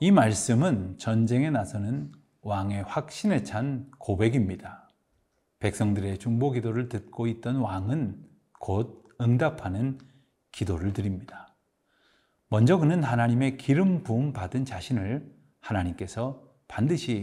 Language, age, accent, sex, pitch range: Korean, 30-49, native, male, 105-145 Hz